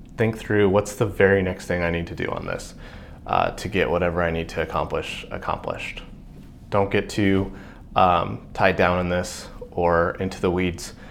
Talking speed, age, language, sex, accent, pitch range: 185 wpm, 20-39, English, male, American, 90-105 Hz